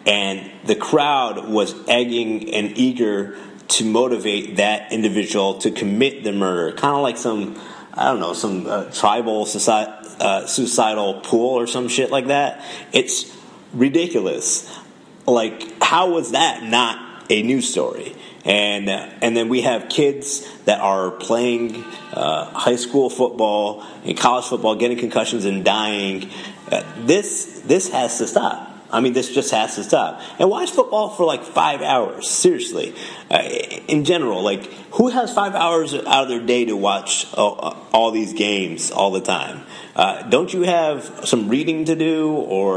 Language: English